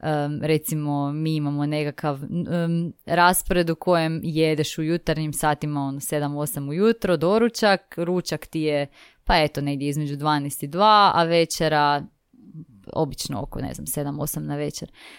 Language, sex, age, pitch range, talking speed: Croatian, female, 20-39, 155-210 Hz, 140 wpm